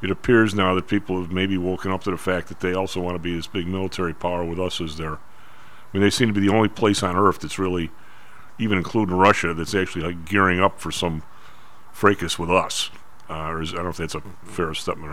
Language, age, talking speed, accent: English, 40-59, 250 wpm, American